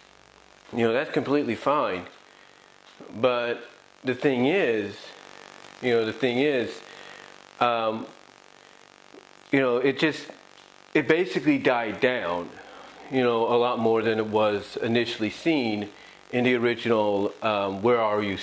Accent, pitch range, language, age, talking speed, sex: American, 110-130 Hz, English, 30-49, 130 wpm, male